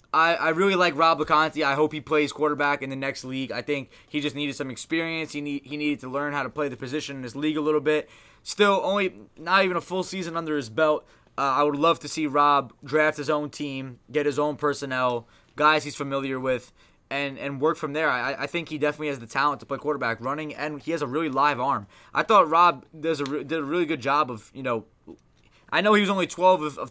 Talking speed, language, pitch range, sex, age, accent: 250 wpm, English, 130-155 Hz, male, 20-39, American